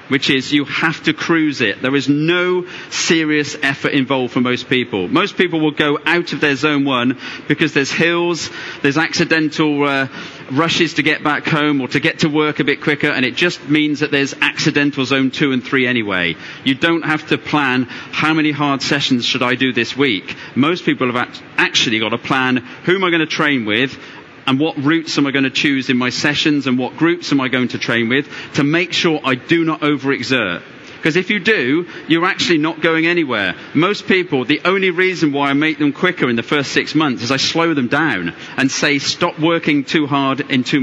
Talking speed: 220 wpm